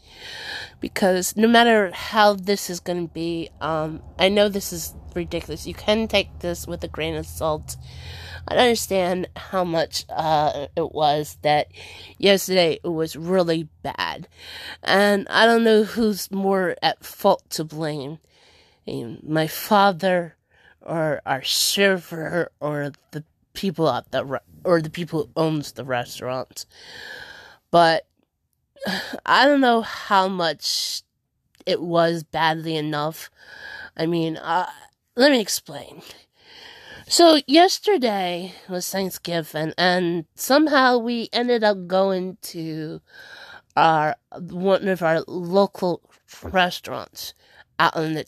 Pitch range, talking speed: 155-200 Hz, 125 wpm